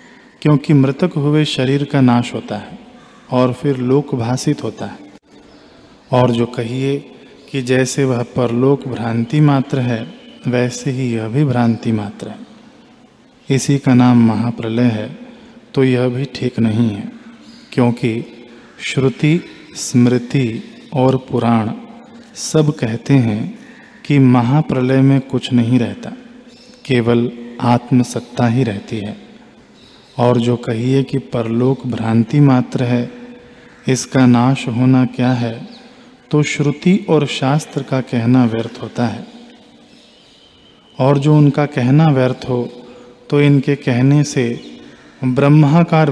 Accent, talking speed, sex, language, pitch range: native, 120 wpm, male, Hindi, 120-155 Hz